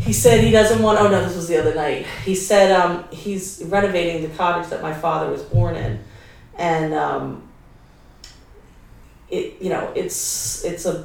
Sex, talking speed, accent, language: female, 180 wpm, American, English